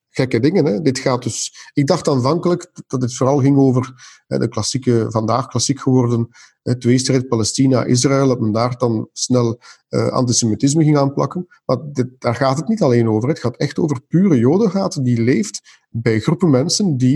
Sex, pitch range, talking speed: male, 120-155 Hz, 175 wpm